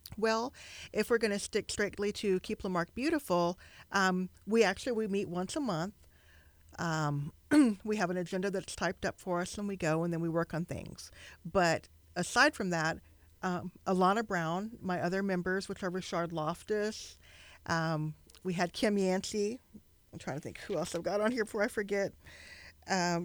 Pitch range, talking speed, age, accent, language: 170-210 Hz, 185 wpm, 40-59, American, English